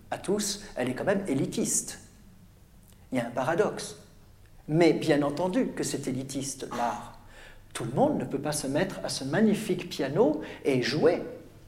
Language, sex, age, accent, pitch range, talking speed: French, male, 50-69, French, 140-195 Hz, 170 wpm